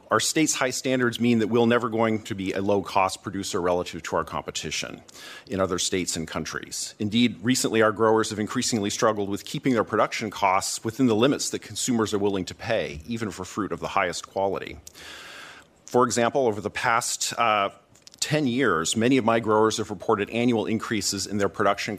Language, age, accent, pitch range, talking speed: English, 40-59, American, 95-115 Hz, 190 wpm